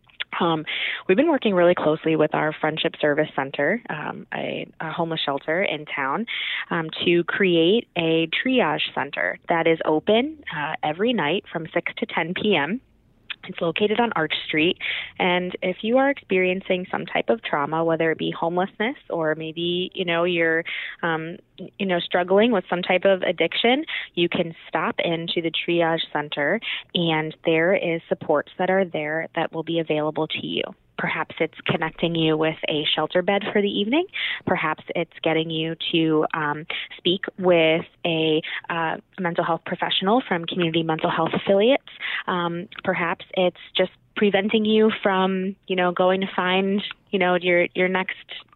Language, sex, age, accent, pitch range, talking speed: English, female, 20-39, American, 160-190 Hz, 165 wpm